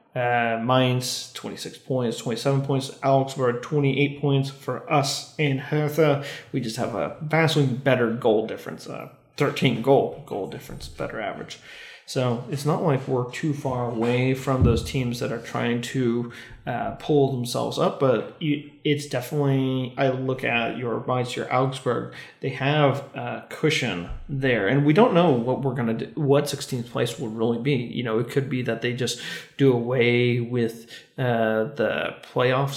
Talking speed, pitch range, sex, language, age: 165 wpm, 120-140 Hz, male, English, 30-49